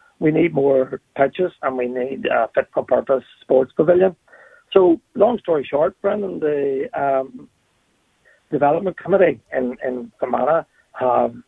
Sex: male